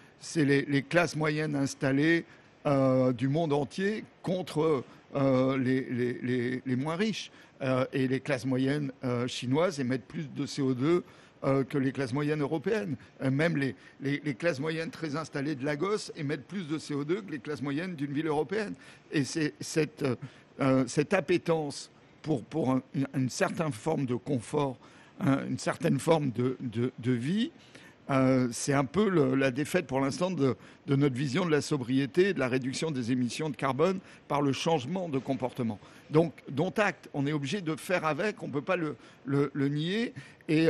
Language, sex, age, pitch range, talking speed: French, male, 60-79, 135-165 Hz, 185 wpm